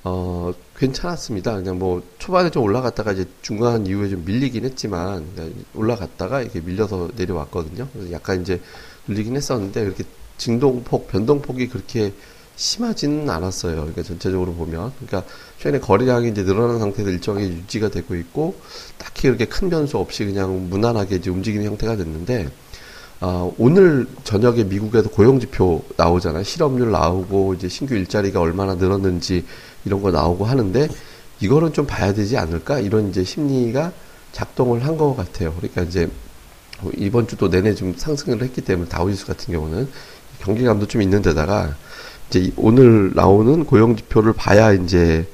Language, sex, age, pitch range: Korean, male, 30-49, 90-120 Hz